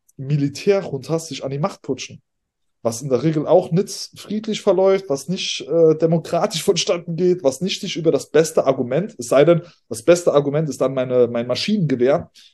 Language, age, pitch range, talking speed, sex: German, 20-39, 135-180 Hz, 190 wpm, male